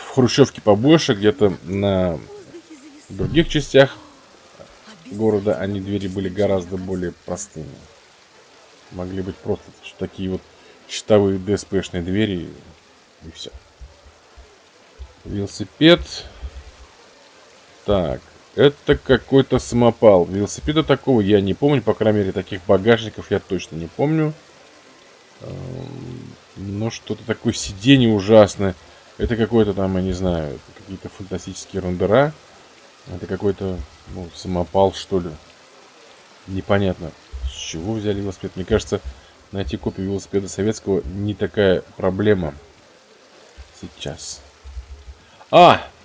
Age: 20-39